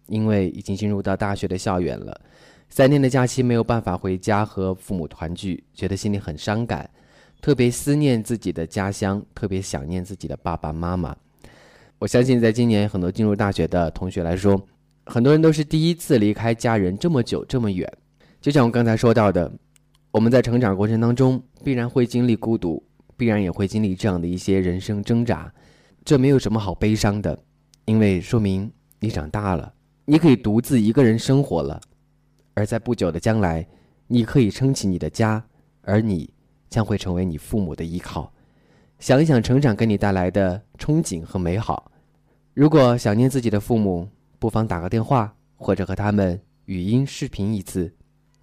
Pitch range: 90-120 Hz